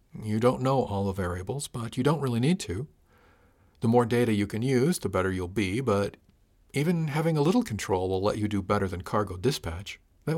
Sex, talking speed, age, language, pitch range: male, 215 wpm, 50-69, English, 100-125 Hz